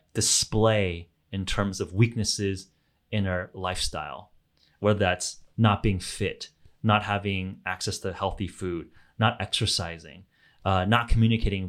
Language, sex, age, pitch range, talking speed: English, male, 30-49, 95-120 Hz, 125 wpm